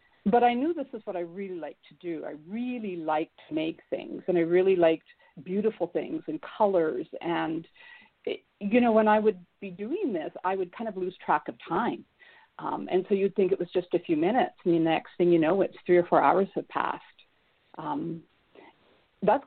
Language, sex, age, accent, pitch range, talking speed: English, female, 50-69, American, 175-240 Hz, 215 wpm